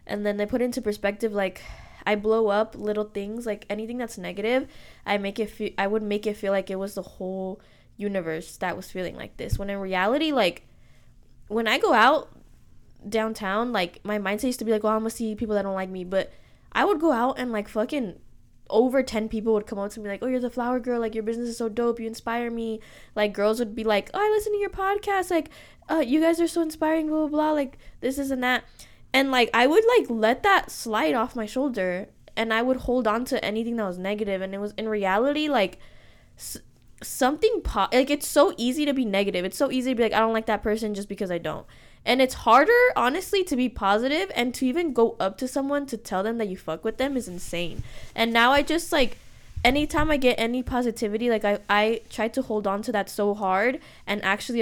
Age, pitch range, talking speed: 10-29, 205-255 Hz, 235 wpm